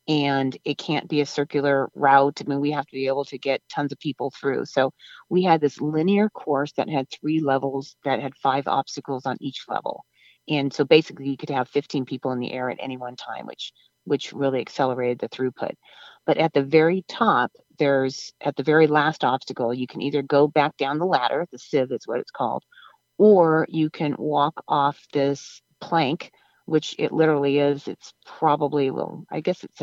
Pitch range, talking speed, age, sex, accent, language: 140-155 Hz, 200 wpm, 40-59, female, American, English